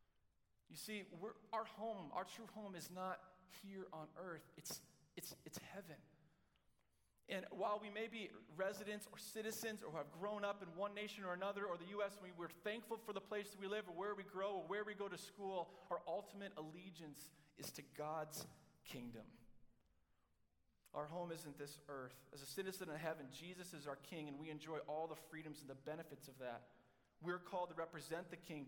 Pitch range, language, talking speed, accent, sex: 130-185 Hz, English, 200 wpm, American, male